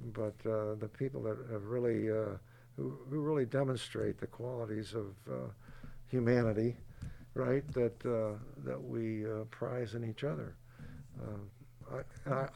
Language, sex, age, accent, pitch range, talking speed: English, male, 60-79, American, 120-145 Hz, 140 wpm